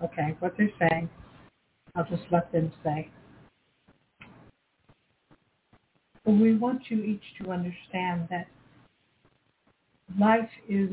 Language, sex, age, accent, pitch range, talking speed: English, female, 60-79, American, 185-210 Hz, 100 wpm